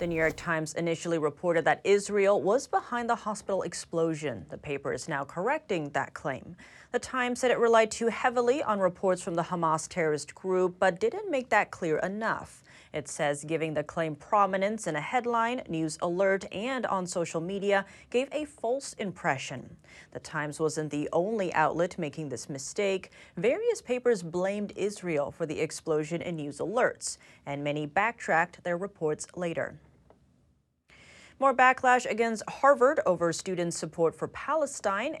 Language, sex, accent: English, female, American